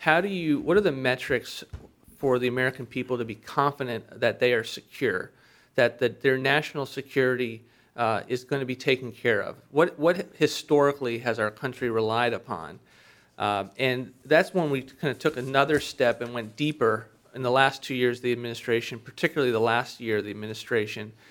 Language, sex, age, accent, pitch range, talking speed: English, male, 40-59, American, 115-135 Hz, 185 wpm